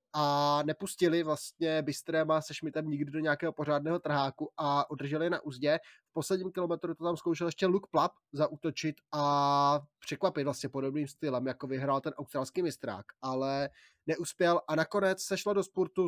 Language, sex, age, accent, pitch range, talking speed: Czech, male, 20-39, native, 145-165 Hz, 160 wpm